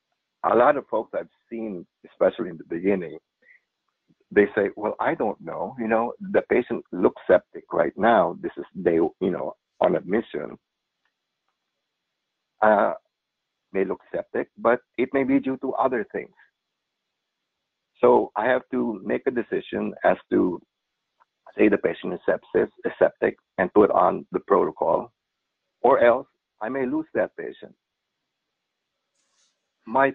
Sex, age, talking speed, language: male, 60-79, 145 wpm, English